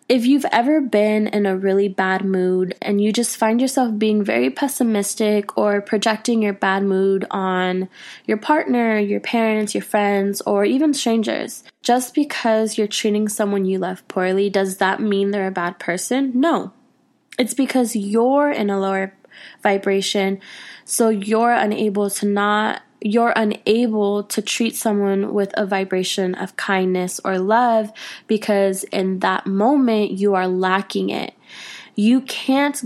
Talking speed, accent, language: 150 wpm, American, English